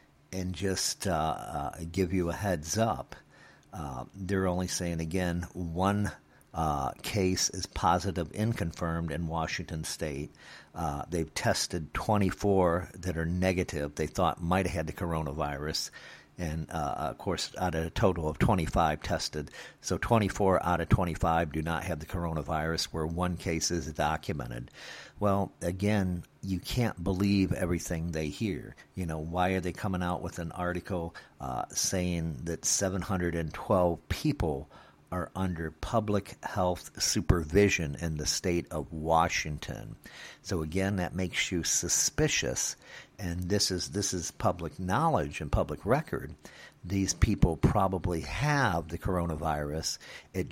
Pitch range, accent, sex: 80-95 Hz, American, male